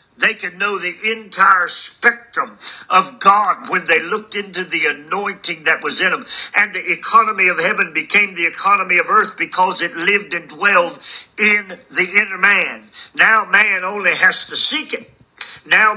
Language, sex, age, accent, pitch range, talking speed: English, male, 50-69, American, 175-240 Hz, 170 wpm